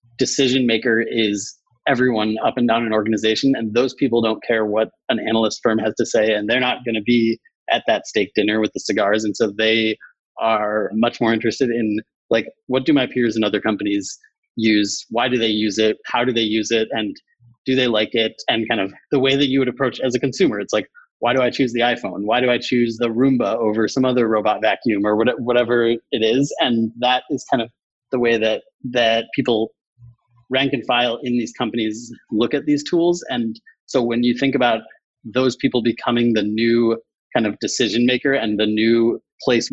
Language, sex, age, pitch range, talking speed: English, male, 30-49, 110-130 Hz, 210 wpm